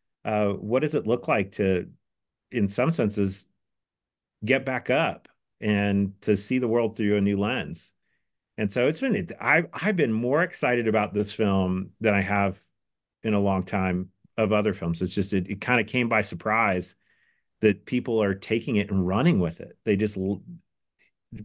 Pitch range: 100-125 Hz